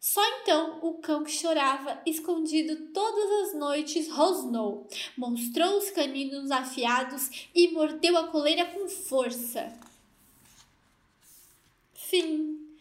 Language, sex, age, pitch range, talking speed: Portuguese, female, 10-29, 280-345 Hz, 105 wpm